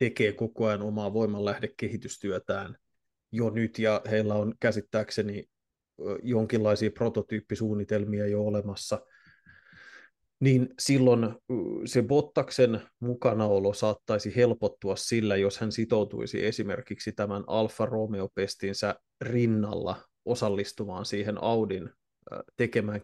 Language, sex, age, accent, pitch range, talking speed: Finnish, male, 20-39, native, 105-115 Hz, 90 wpm